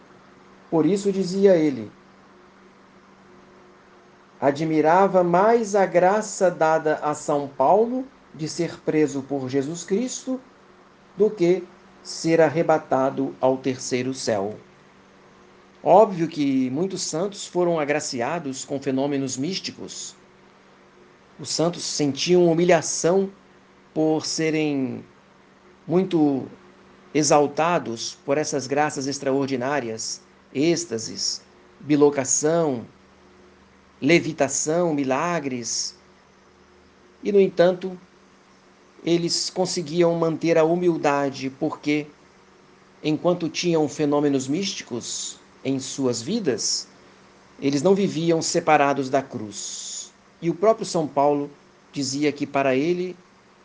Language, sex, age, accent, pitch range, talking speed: Portuguese, male, 50-69, Brazilian, 140-175 Hz, 90 wpm